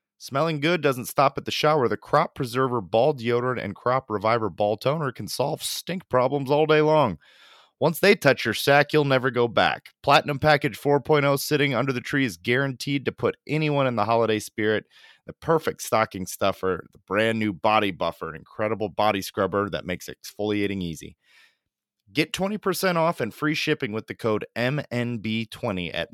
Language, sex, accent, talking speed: English, male, American, 175 wpm